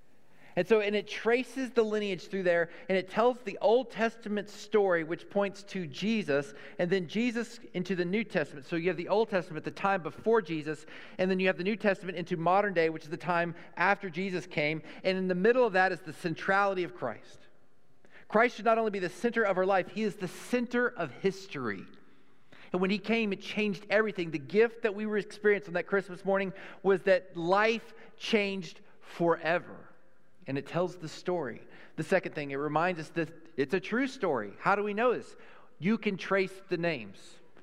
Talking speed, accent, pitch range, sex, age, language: 205 wpm, American, 170-210 Hz, male, 40-59, English